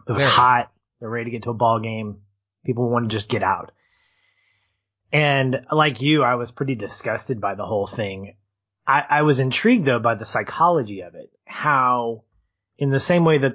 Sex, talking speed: male, 190 wpm